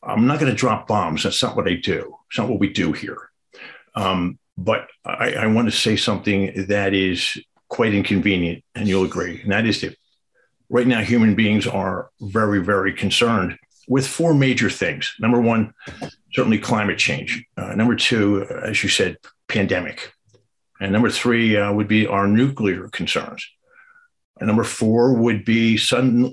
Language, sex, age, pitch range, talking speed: English, male, 50-69, 100-130 Hz, 170 wpm